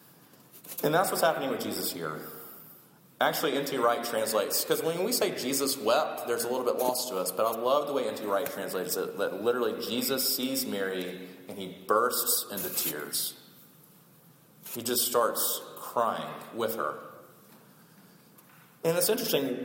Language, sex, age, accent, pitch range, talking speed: English, male, 30-49, American, 135-190 Hz, 160 wpm